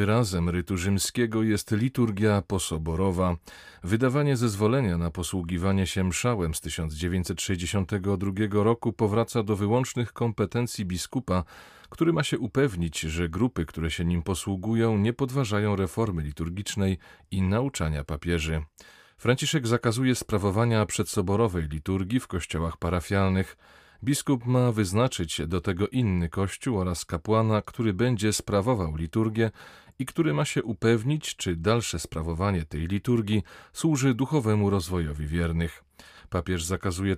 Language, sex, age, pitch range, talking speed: Polish, male, 40-59, 90-115 Hz, 120 wpm